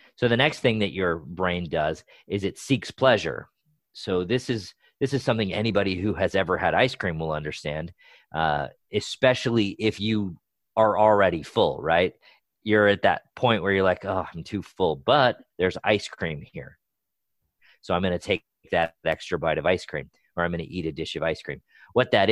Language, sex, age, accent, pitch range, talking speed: English, male, 40-59, American, 90-115 Hz, 200 wpm